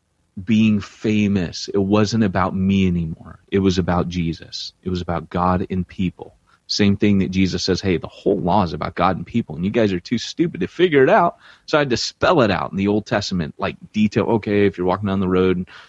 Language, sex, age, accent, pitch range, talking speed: English, male, 30-49, American, 95-125 Hz, 235 wpm